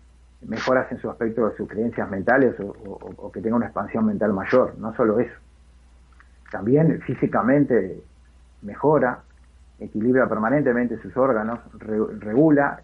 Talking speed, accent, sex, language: 135 wpm, Argentinian, male, Spanish